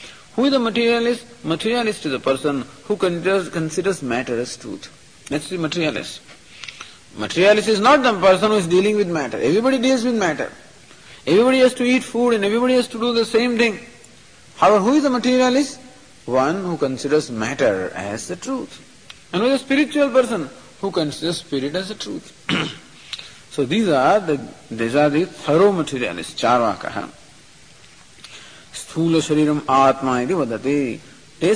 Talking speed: 150 wpm